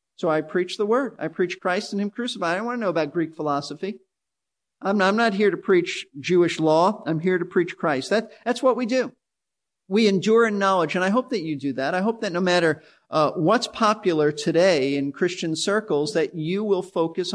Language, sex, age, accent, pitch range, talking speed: English, male, 50-69, American, 155-205 Hz, 220 wpm